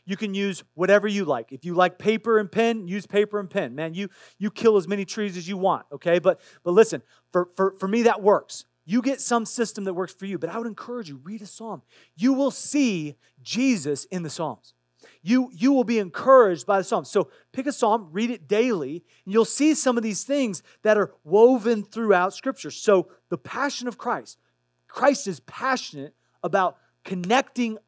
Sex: male